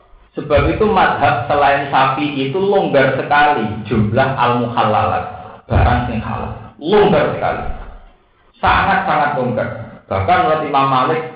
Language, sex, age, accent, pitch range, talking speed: Indonesian, male, 40-59, native, 110-155 Hz, 105 wpm